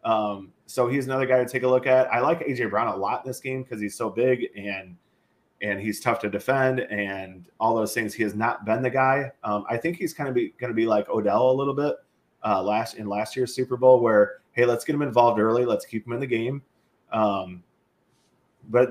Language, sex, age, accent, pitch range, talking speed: English, male, 30-49, American, 110-130 Hz, 240 wpm